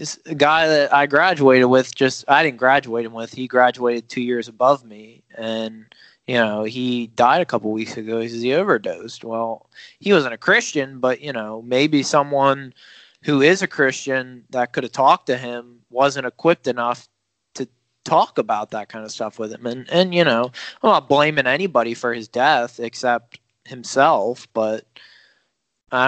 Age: 20-39